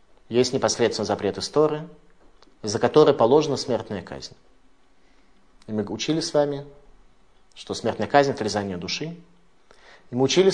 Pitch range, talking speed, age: 115-150 Hz, 125 wpm, 30-49